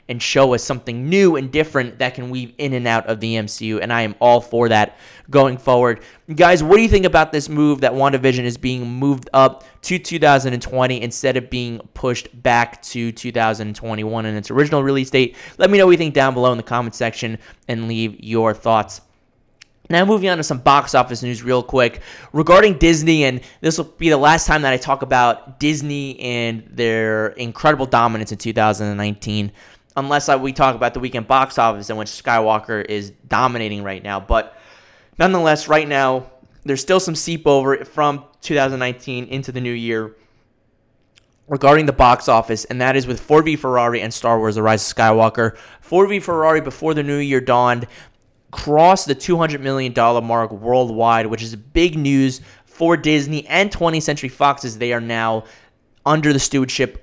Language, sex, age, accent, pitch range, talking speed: English, male, 20-39, American, 115-145 Hz, 185 wpm